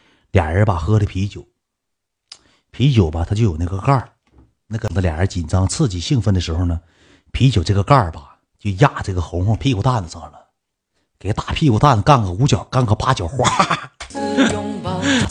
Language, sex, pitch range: Chinese, male, 95-140 Hz